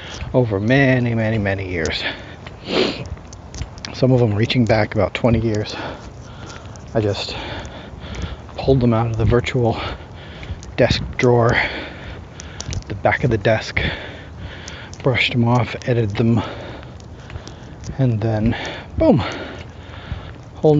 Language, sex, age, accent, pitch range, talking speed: English, male, 30-49, American, 100-125 Hz, 110 wpm